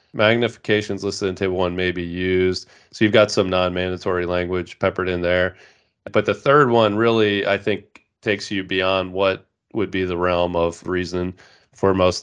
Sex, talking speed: male, 175 wpm